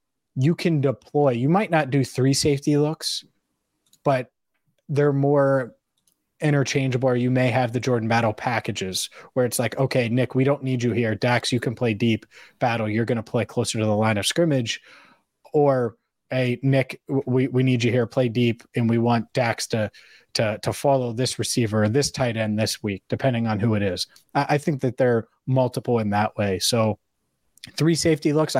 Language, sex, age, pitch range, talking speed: English, male, 30-49, 115-135 Hz, 185 wpm